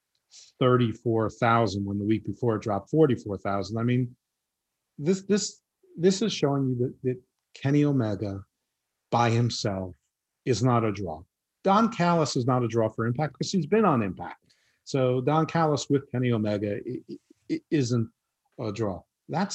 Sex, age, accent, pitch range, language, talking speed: male, 50-69, American, 110-140 Hz, English, 160 wpm